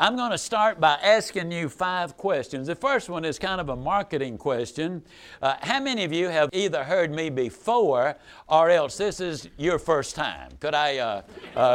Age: 60-79